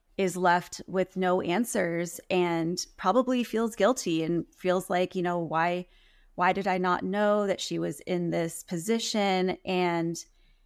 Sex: female